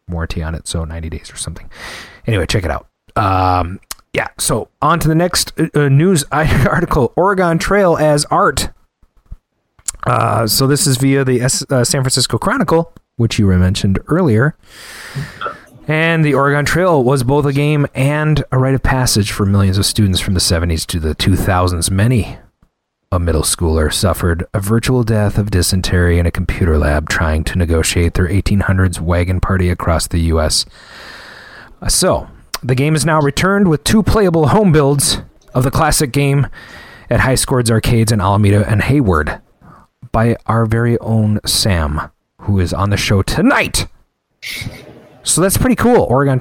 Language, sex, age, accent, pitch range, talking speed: English, male, 30-49, American, 95-145 Hz, 165 wpm